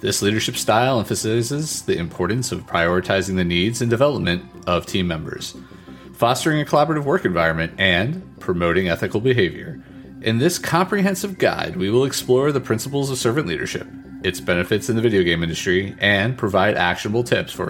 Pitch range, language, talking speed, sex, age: 90-140 Hz, English, 165 wpm, male, 30-49